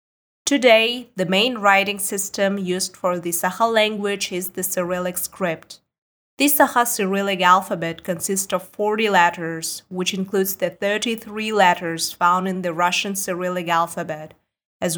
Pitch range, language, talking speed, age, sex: 175-200 Hz, English, 135 wpm, 20-39, female